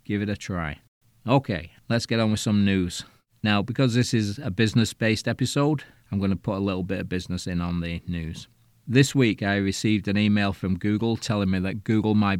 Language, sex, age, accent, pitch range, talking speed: English, male, 40-59, British, 95-115 Hz, 210 wpm